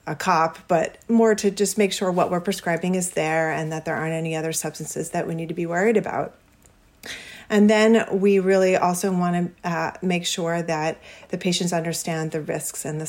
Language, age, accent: English, 40-59, American